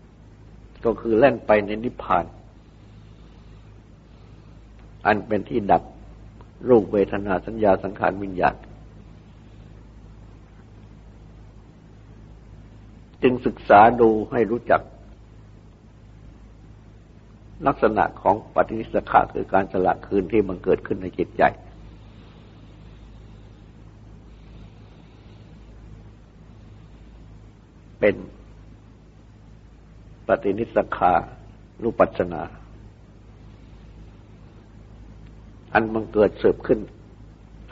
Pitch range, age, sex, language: 100-110 Hz, 60-79, male, Thai